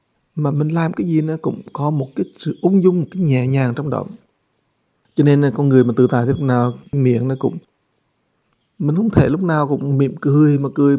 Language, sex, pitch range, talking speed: English, male, 130-160 Hz, 235 wpm